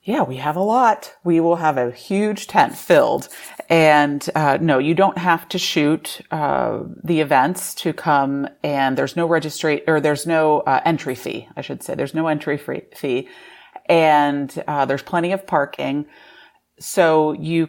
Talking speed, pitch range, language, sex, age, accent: 175 wpm, 145-170 Hz, English, female, 30-49, American